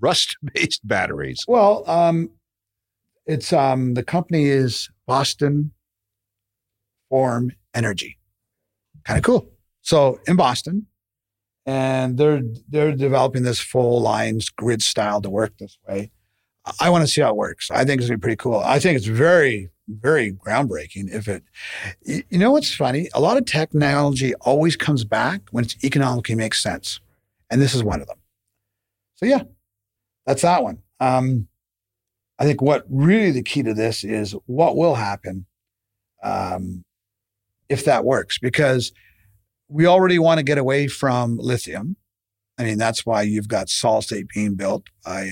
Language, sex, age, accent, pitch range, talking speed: English, male, 50-69, American, 105-145 Hz, 155 wpm